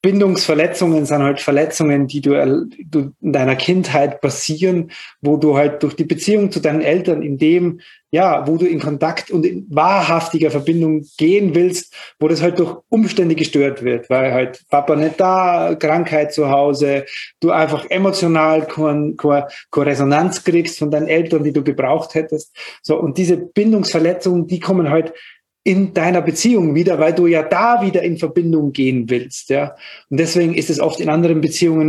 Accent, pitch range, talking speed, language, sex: German, 150-180 Hz, 170 wpm, German, male